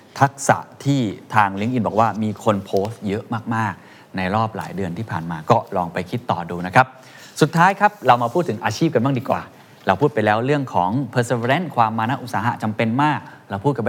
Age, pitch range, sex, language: 20-39, 100-135 Hz, male, Thai